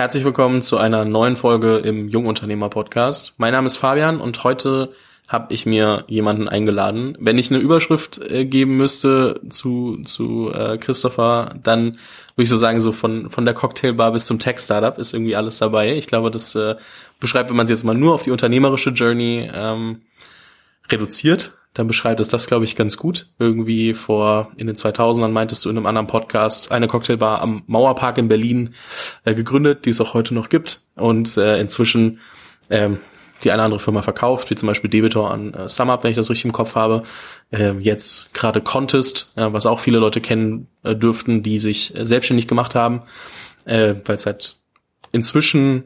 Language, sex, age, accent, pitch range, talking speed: German, male, 20-39, German, 110-125 Hz, 185 wpm